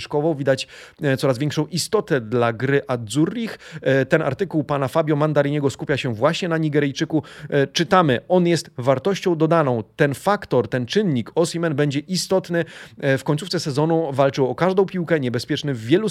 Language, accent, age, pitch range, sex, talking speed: Polish, native, 30-49, 130-170 Hz, male, 145 wpm